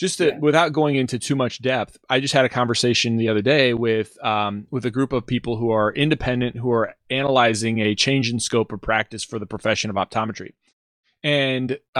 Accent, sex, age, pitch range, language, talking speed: American, male, 30-49, 110-135 Hz, English, 205 wpm